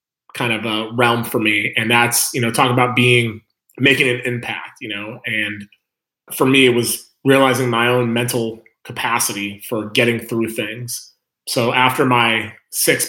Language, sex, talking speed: English, male, 165 wpm